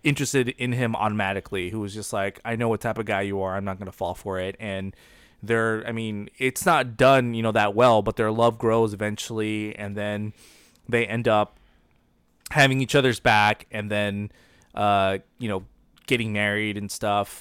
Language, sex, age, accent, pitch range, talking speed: English, male, 20-39, American, 100-120 Hz, 195 wpm